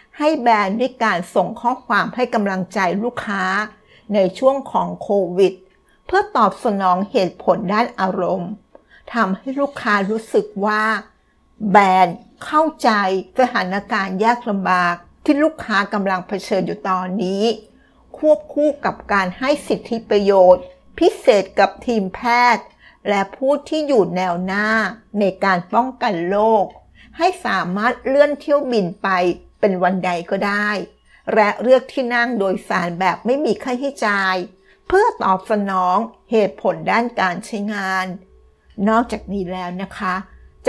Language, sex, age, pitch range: Thai, female, 60-79, 190-235 Hz